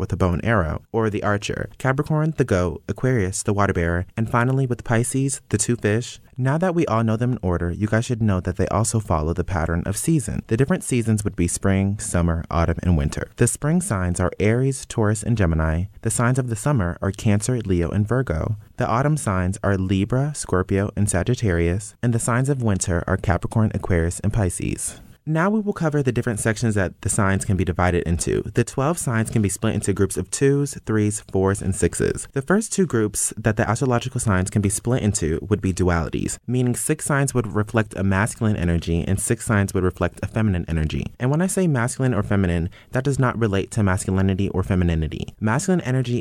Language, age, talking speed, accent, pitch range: English, 30-49, 215 wpm, American, 95-120 Hz